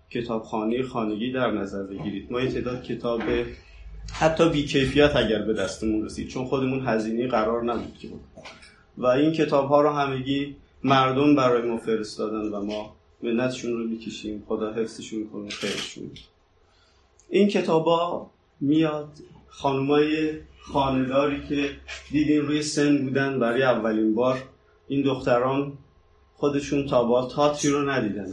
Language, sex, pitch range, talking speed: Persian, male, 110-140 Hz, 125 wpm